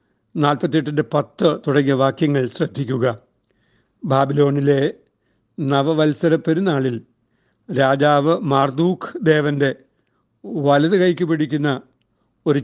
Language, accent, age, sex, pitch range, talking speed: Malayalam, native, 60-79, male, 130-155 Hz, 75 wpm